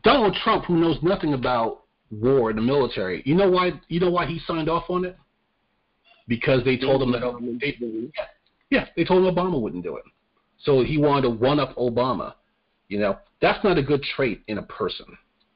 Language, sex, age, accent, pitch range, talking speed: English, male, 40-59, American, 140-200 Hz, 195 wpm